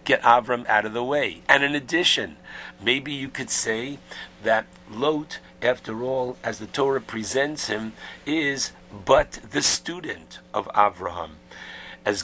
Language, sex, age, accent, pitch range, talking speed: English, male, 60-79, American, 95-135 Hz, 140 wpm